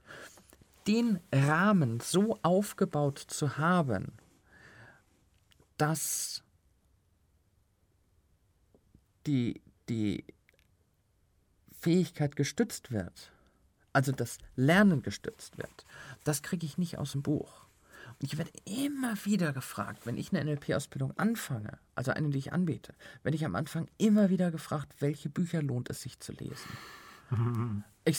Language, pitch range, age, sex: German, 130-185 Hz, 40-59, male